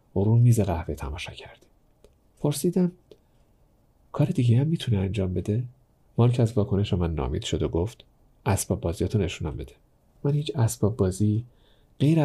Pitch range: 95-120 Hz